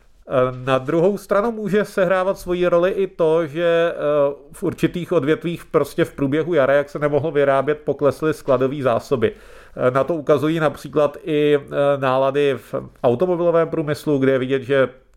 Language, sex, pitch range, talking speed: Czech, male, 140-170 Hz, 145 wpm